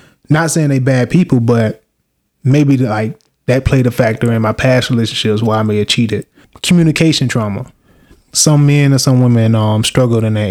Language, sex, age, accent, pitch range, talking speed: English, male, 20-39, American, 120-140 Hz, 190 wpm